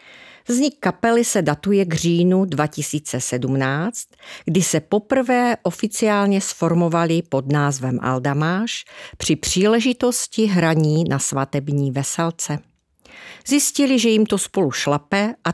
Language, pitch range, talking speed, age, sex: Czech, 150-210 Hz, 110 wpm, 40-59, female